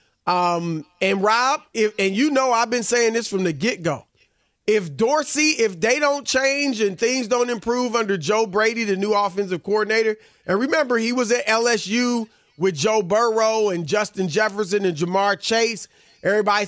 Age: 30-49